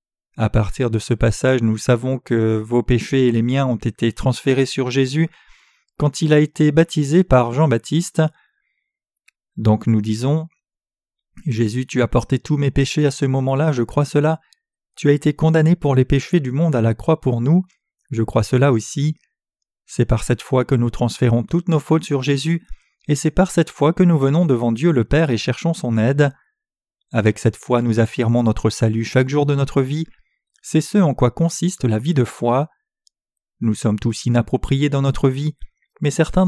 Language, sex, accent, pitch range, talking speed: French, male, French, 120-155 Hz, 190 wpm